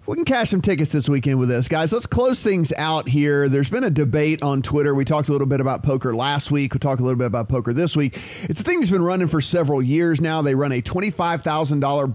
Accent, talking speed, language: American, 260 wpm, English